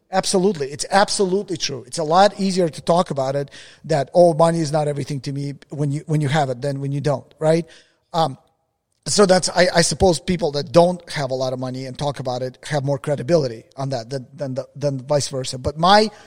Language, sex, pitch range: English, male, 140-175 Hz